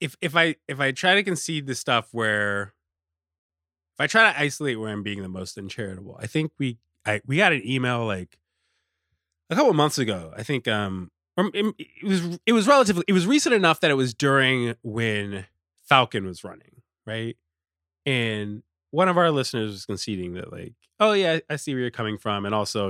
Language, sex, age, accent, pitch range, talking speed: English, male, 20-39, American, 90-140 Hz, 205 wpm